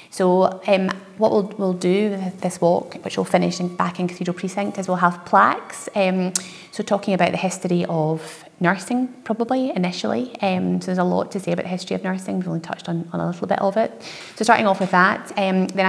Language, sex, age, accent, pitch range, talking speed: English, female, 30-49, British, 170-190 Hz, 225 wpm